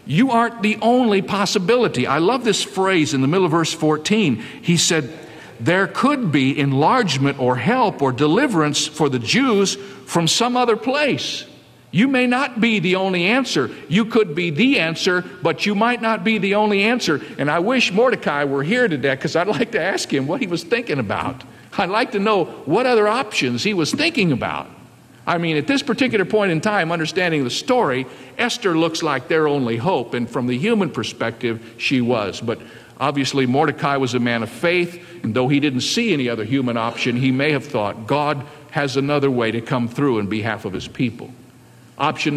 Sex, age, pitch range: male, 50-69, 130-205 Hz